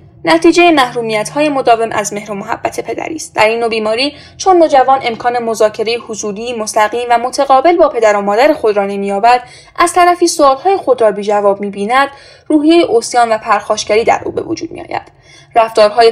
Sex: female